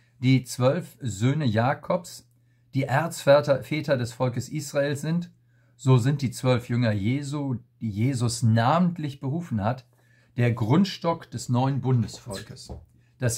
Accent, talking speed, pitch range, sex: German, 120 wpm, 120-140 Hz, male